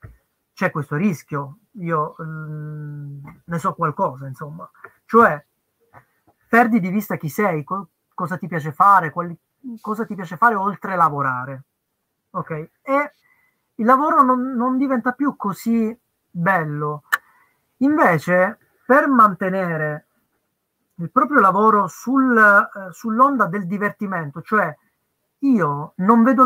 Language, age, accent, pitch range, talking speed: Italian, 30-49, native, 165-235 Hz, 120 wpm